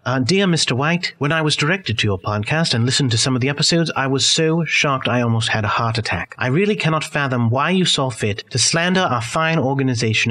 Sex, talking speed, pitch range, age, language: male, 240 wpm, 110-150 Hz, 30-49, English